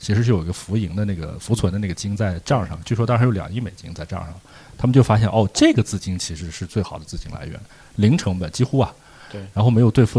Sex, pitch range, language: male, 95-115 Hz, Chinese